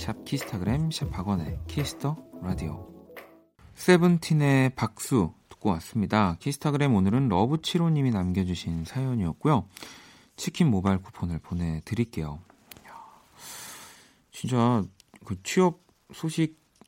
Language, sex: Korean, male